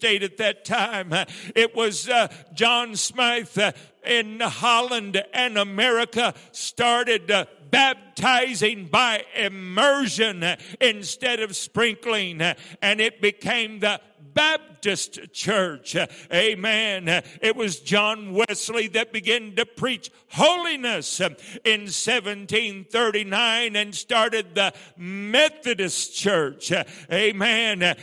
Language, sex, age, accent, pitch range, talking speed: English, male, 60-79, American, 195-235 Hz, 90 wpm